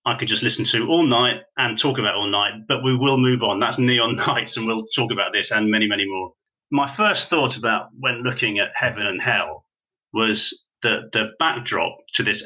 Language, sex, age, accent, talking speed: English, male, 30-49, British, 220 wpm